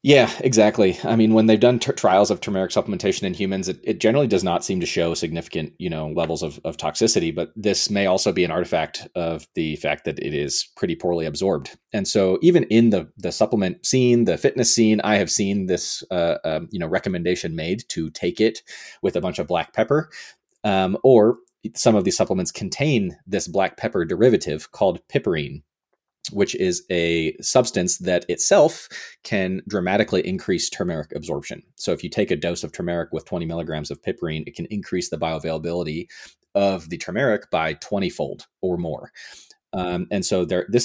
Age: 30-49